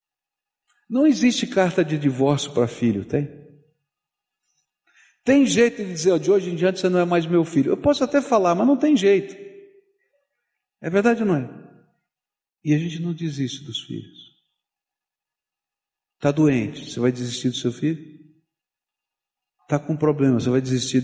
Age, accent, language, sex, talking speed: 50-69, Brazilian, Portuguese, male, 160 wpm